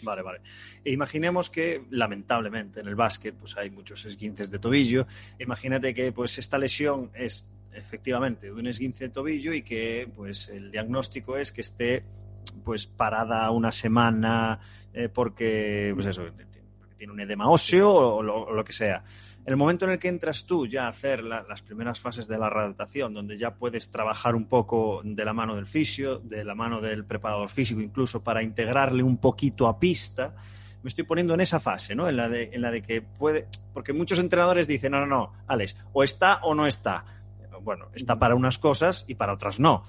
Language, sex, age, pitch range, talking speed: Spanish, male, 30-49, 105-135 Hz, 200 wpm